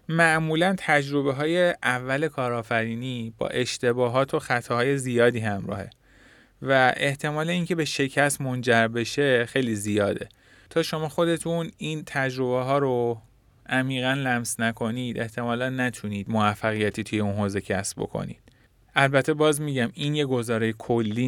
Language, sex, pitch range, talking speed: Persian, male, 110-135 Hz, 125 wpm